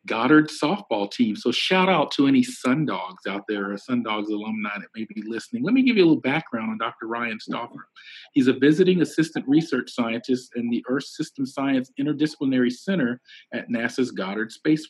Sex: male